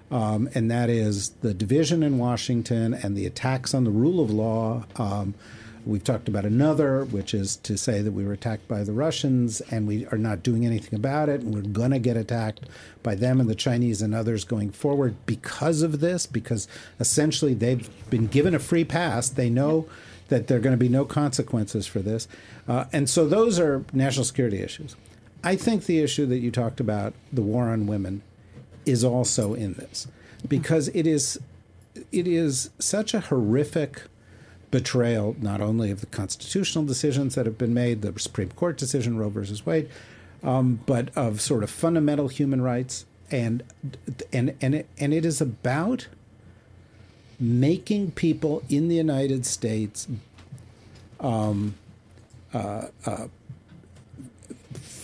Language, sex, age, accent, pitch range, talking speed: English, male, 50-69, American, 110-140 Hz, 165 wpm